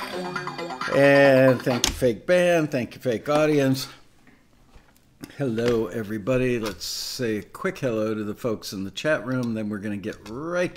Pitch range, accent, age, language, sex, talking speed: 110-140 Hz, American, 60-79, English, male, 160 wpm